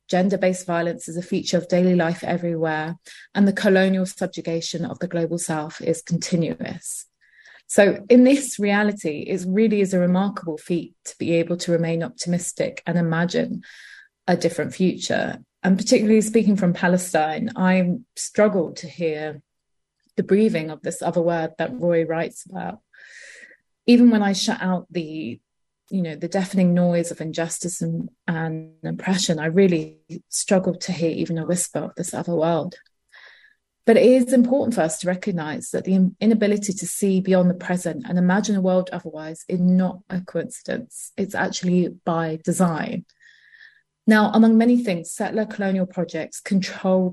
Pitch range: 170-200 Hz